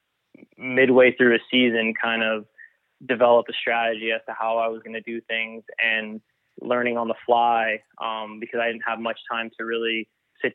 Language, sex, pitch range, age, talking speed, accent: English, male, 115-120 Hz, 20-39, 190 wpm, American